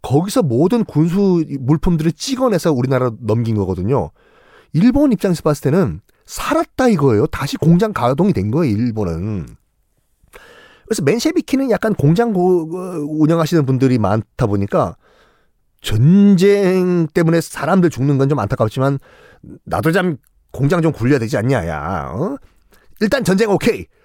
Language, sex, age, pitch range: Korean, male, 40-59, 115-185 Hz